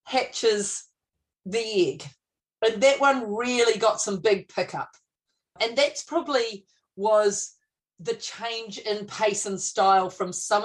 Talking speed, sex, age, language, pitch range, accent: 130 wpm, female, 40-59, English, 195-245 Hz, Australian